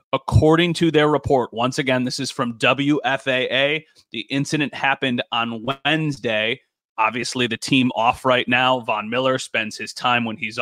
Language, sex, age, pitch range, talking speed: English, male, 30-49, 120-145 Hz, 160 wpm